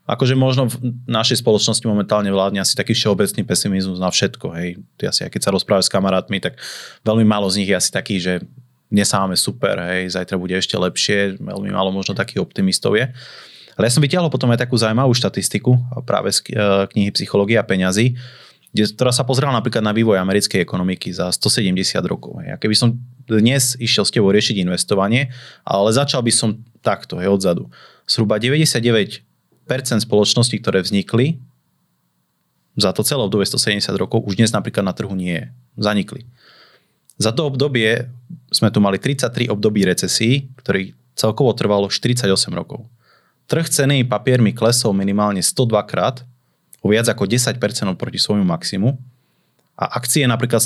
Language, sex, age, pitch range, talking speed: Slovak, male, 30-49, 100-125 Hz, 165 wpm